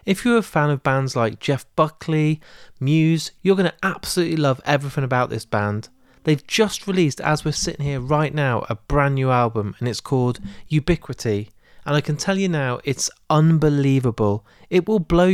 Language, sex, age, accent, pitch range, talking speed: English, male, 30-49, British, 120-160 Hz, 185 wpm